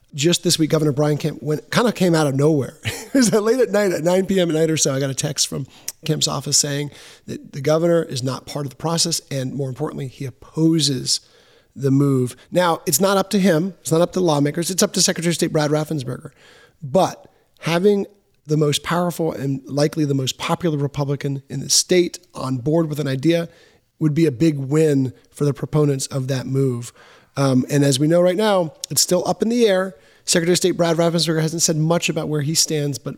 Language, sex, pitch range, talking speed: English, male, 140-175 Hz, 220 wpm